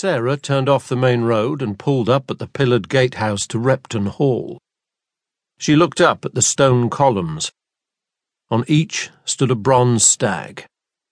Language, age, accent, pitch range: English, 50-69, British, 110-135 Hz